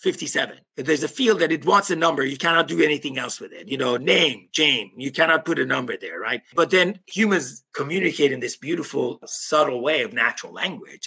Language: English